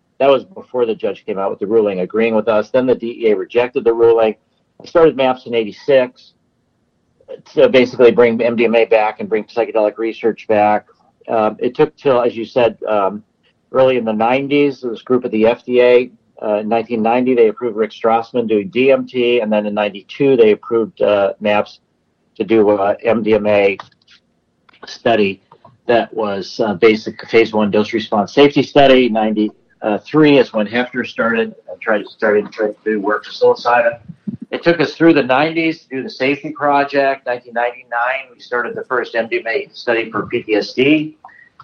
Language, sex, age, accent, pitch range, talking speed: English, male, 50-69, American, 110-140 Hz, 170 wpm